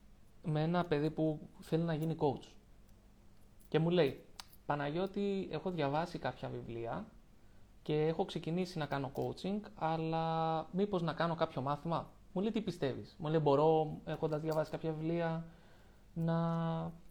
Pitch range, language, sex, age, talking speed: 145-175 Hz, Greek, male, 20-39, 140 wpm